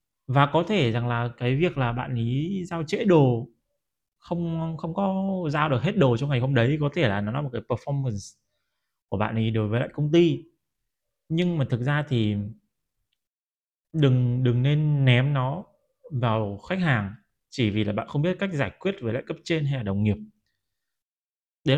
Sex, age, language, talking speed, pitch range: male, 20-39, Vietnamese, 195 wpm, 110-155 Hz